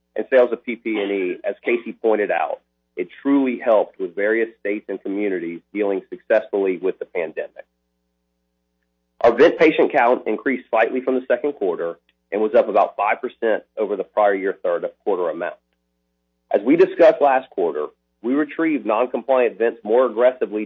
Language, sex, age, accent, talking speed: English, male, 40-59, American, 170 wpm